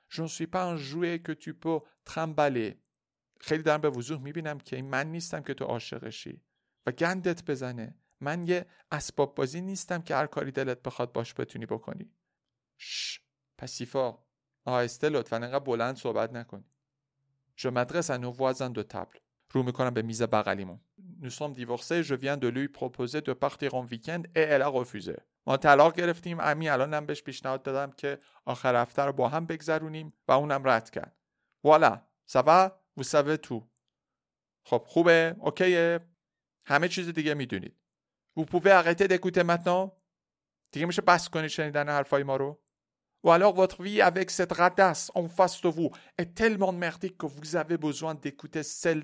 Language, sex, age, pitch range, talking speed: Persian, male, 50-69, 130-170 Hz, 150 wpm